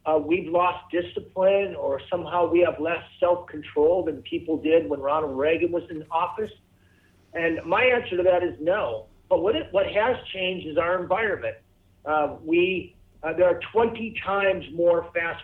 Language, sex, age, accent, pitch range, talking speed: English, male, 50-69, American, 155-200 Hz, 170 wpm